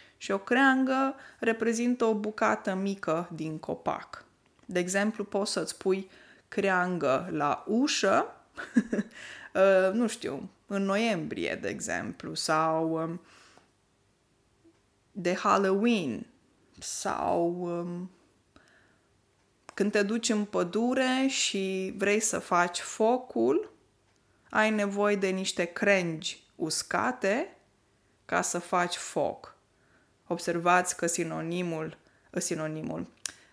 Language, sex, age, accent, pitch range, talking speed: Romanian, female, 20-39, native, 175-245 Hz, 95 wpm